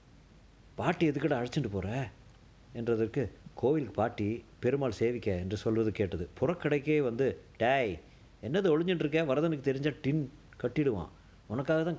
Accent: native